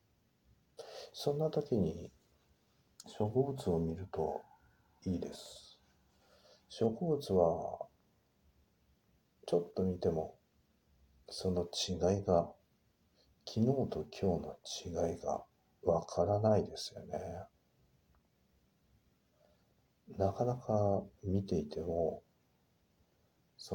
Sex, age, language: male, 50-69, Japanese